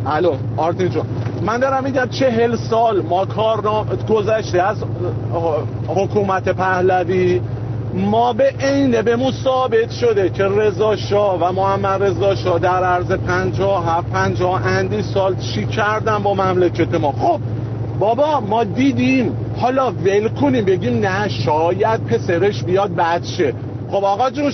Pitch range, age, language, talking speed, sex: 165-225 Hz, 50-69, English, 125 wpm, male